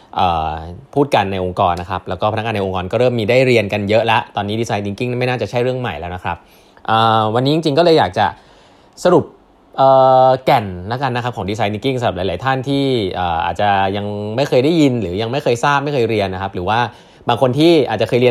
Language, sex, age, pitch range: Thai, male, 20-39, 100-135 Hz